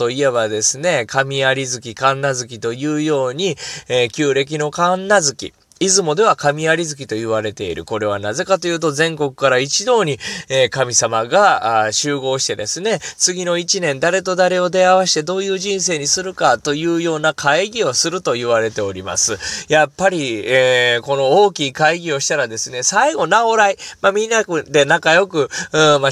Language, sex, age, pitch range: Japanese, male, 20-39, 125-175 Hz